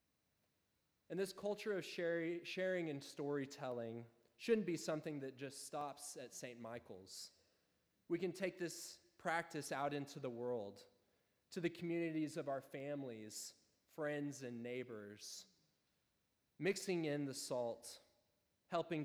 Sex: male